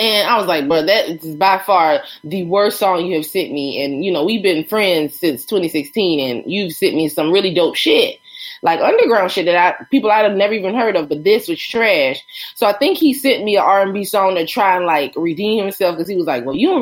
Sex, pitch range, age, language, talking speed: female, 180-255 Hz, 20-39, English, 250 wpm